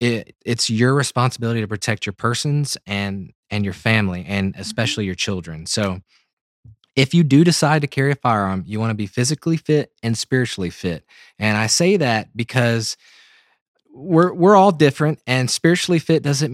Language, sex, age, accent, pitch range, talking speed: English, male, 20-39, American, 105-135 Hz, 170 wpm